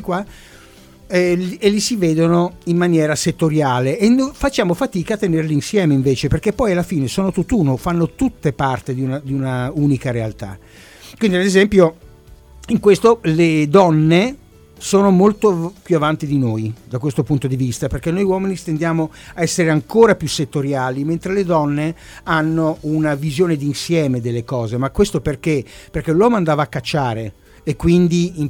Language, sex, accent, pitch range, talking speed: Italian, male, native, 135-180 Hz, 165 wpm